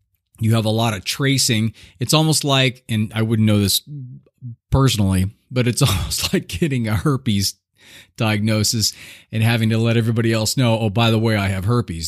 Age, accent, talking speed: 30-49, American, 185 wpm